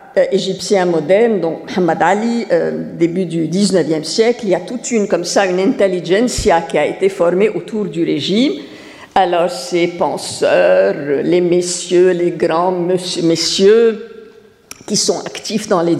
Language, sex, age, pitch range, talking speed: French, female, 50-69, 180-240 Hz, 155 wpm